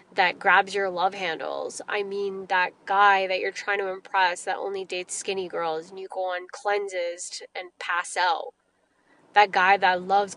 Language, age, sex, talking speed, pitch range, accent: English, 20-39, female, 180 wpm, 195-280 Hz, American